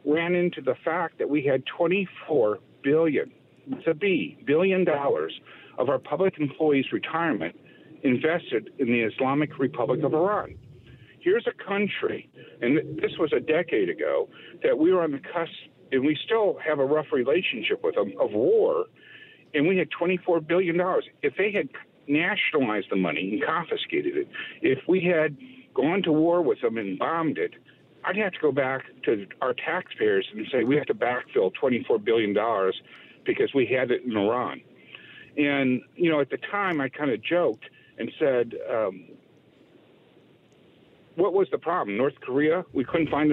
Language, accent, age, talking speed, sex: English, American, 60-79, 170 wpm, male